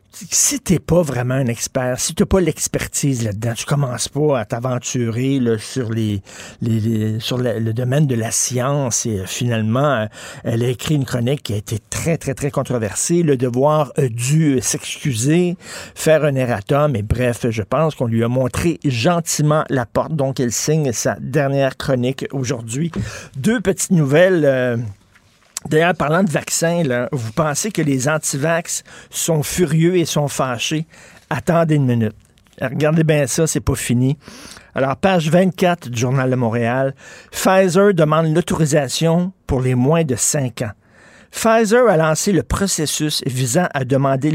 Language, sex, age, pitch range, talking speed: French, male, 60-79, 120-160 Hz, 165 wpm